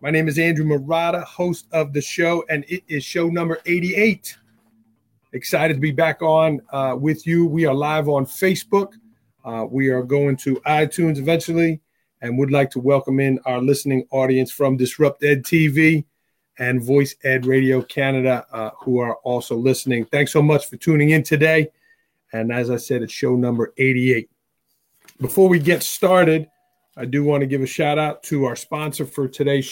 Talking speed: 180 wpm